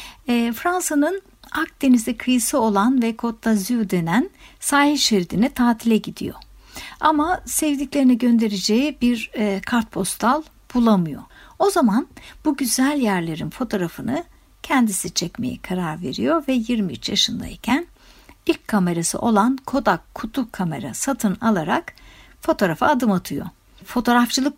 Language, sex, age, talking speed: Turkish, female, 60-79, 105 wpm